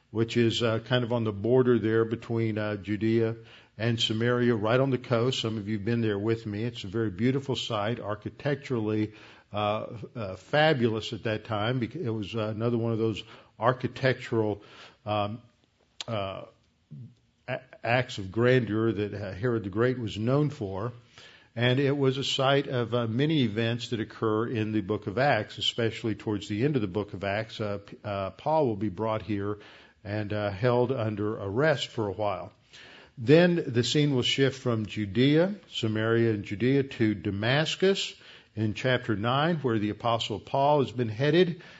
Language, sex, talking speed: English, male, 175 wpm